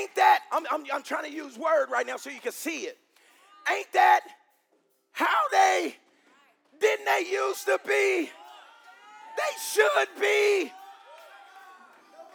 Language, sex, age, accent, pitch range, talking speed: English, male, 40-59, American, 290-395 Hz, 135 wpm